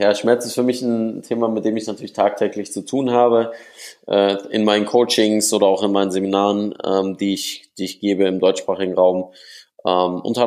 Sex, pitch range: male, 100-120 Hz